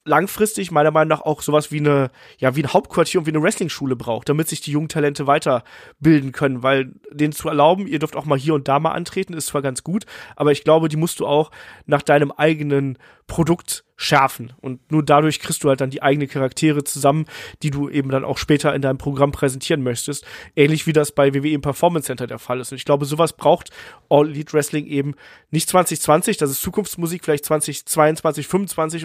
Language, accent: German, German